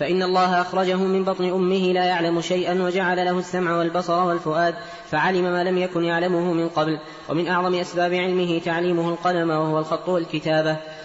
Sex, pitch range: female, 165-185 Hz